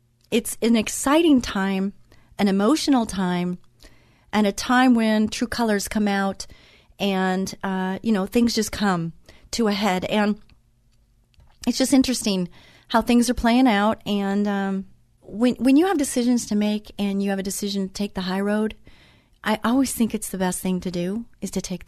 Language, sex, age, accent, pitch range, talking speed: English, female, 40-59, American, 190-245 Hz, 180 wpm